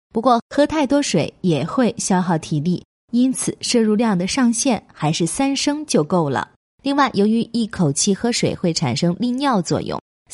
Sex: female